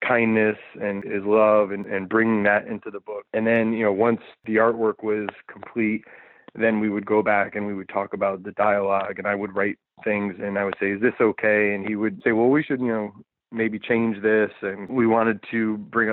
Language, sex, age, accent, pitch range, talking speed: English, male, 20-39, American, 105-125 Hz, 225 wpm